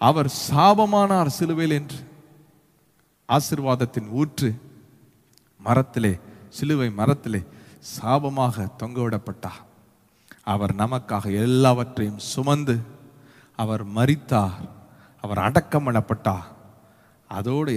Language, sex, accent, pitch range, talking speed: Tamil, male, native, 115-170 Hz, 70 wpm